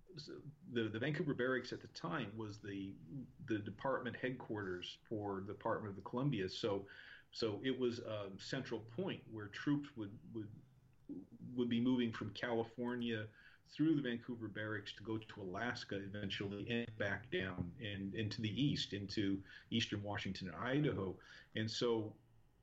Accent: American